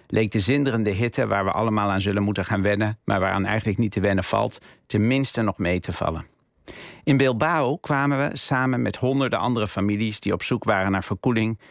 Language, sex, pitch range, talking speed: Dutch, male, 100-120 Hz, 200 wpm